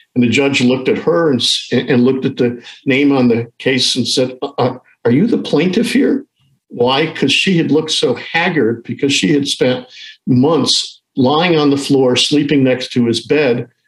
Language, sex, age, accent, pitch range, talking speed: English, male, 50-69, American, 120-140 Hz, 190 wpm